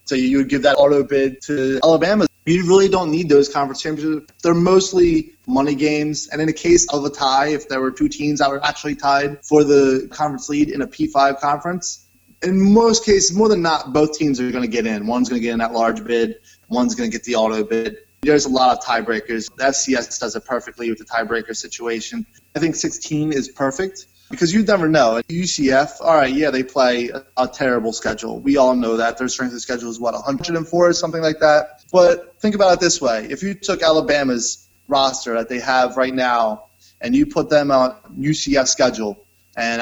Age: 20-39